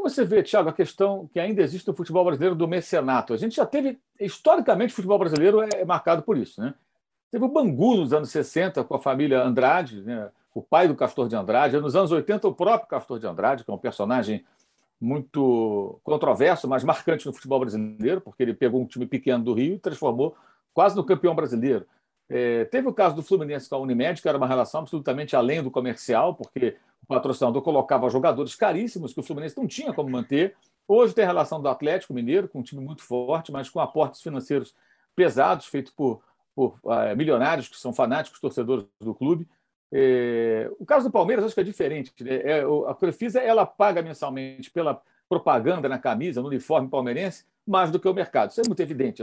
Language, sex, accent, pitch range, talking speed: Portuguese, male, Brazilian, 135-205 Hz, 195 wpm